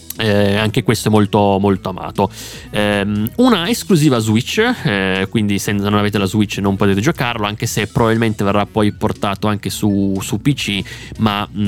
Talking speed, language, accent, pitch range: 165 wpm, Italian, native, 100-125 Hz